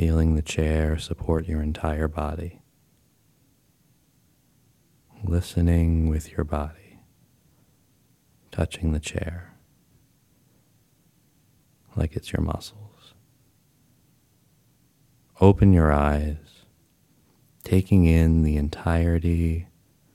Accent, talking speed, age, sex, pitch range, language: American, 75 wpm, 30-49, male, 75-95 Hz, English